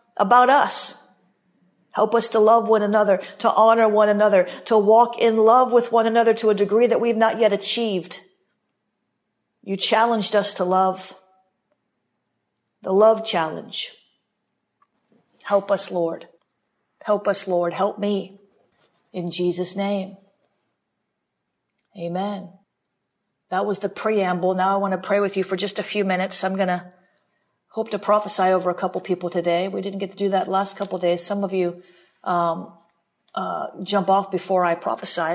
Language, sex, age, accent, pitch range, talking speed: English, female, 40-59, American, 185-220 Hz, 155 wpm